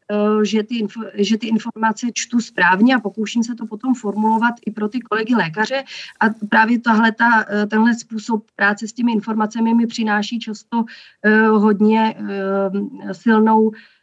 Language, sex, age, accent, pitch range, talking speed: Czech, female, 30-49, native, 210-230 Hz, 135 wpm